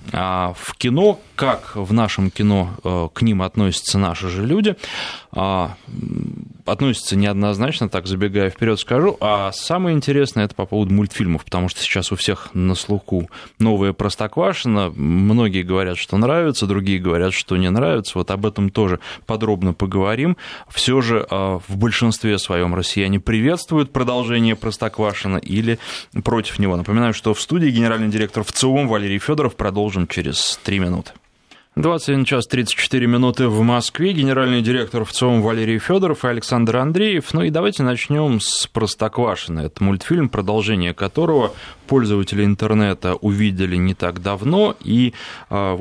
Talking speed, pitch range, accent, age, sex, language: 140 wpm, 95-120 Hz, native, 20-39, male, Russian